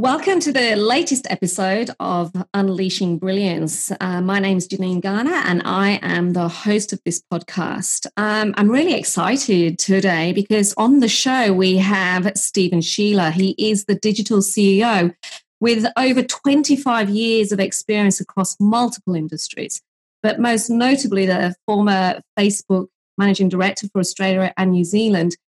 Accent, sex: British, female